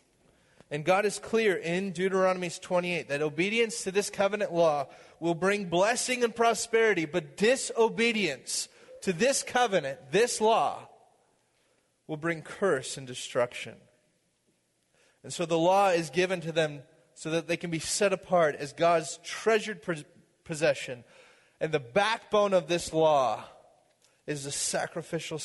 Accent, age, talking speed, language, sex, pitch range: American, 30-49, 135 wpm, English, male, 160-210 Hz